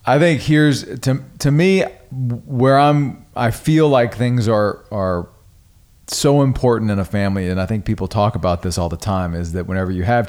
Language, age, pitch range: English, 40-59, 95-125 Hz